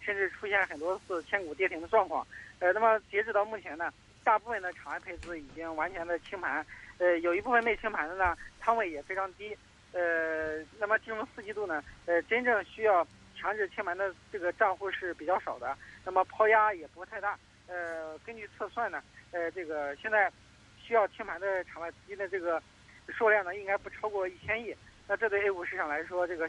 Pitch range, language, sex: 170-215 Hz, Chinese, male